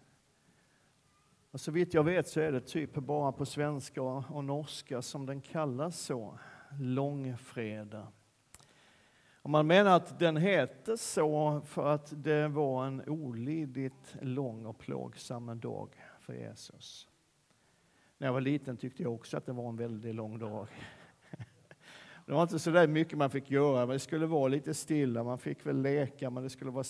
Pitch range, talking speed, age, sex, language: 125-155 Hz, 165 wpm, 50-69, male, Swedish